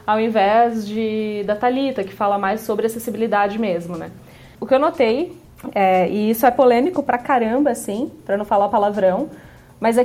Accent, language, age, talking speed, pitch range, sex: Brazilian, Portuguese, 20-39, 180 wpm, 195-250 Hz, female